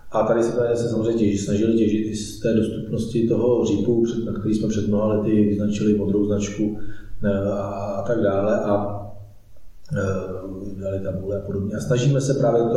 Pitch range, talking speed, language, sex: 105-120 Hz, 165 wpm, Czech, male